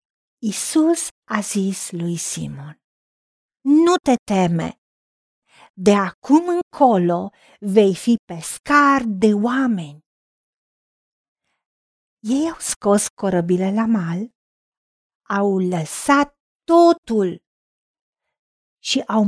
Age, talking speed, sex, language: 40-59, 85 wpm, female, Romanian